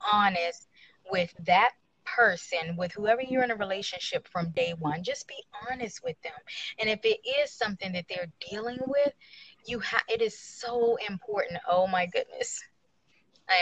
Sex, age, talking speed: female, 20-39, 165 wpm